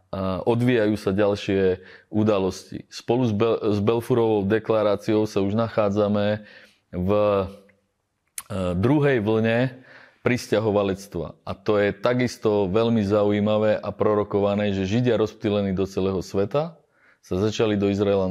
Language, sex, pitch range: Slovak, male, 100-115 Hz